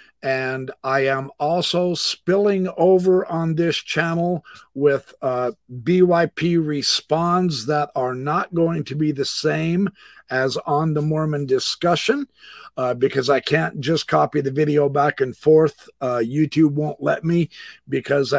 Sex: male